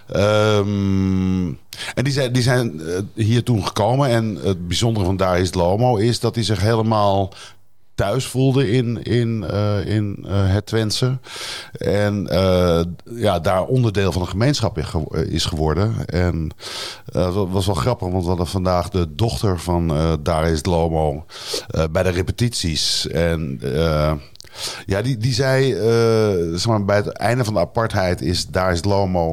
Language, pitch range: Dutch, 90-115 Hz